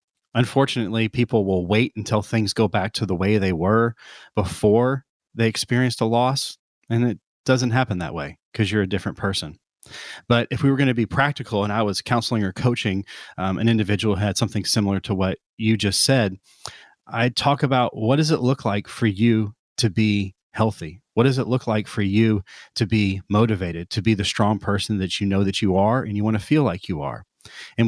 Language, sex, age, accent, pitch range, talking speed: English, male, 30-49, American, 100-120 Hz, 210 wpm